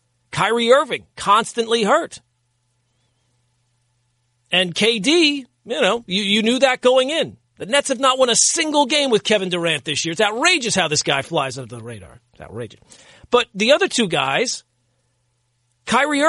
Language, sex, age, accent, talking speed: English, male, 40-59, American, 160 wpm